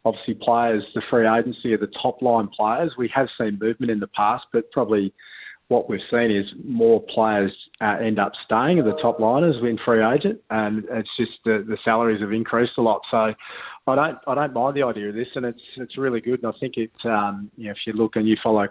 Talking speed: 235 wpm